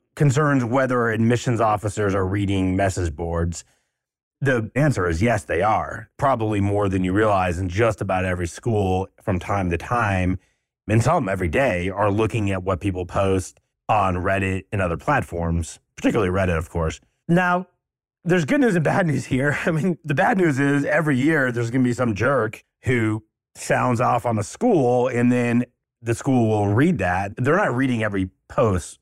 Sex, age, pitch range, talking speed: male, 30-49, 95-130 Hz, 180 wpm